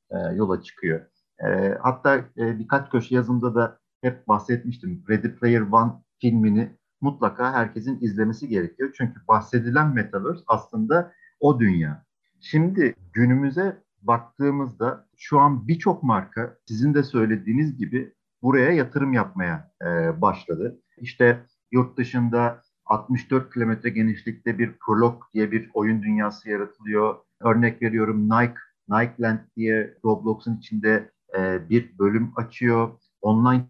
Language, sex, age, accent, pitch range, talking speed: Turkish, male, 50-69, native, 110-130 Hz, 120 wpm